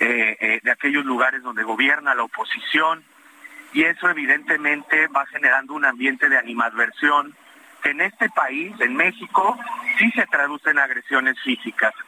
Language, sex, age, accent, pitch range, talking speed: Spanish, male, 30-49, Mexican, 130-195 Hz, 145 wpm